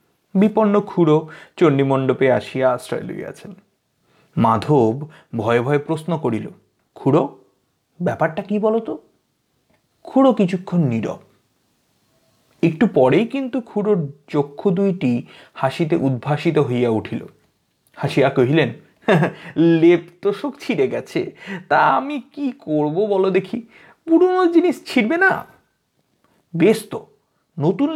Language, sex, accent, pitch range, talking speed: Bengali, male, native, 145-235 Hz, 95 wpm